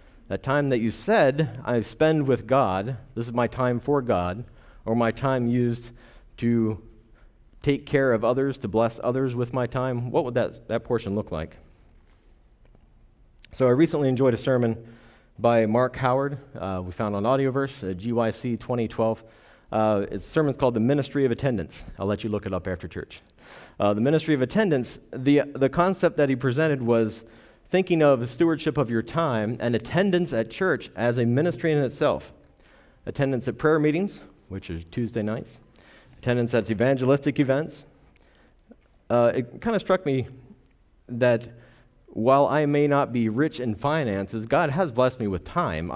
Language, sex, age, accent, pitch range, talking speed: English, male, 40-59, American, 110-135 Hz, 170 wpm